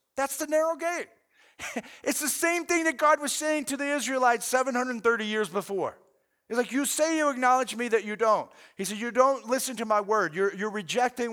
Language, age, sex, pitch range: English, 50-69, male, 205-255 Hz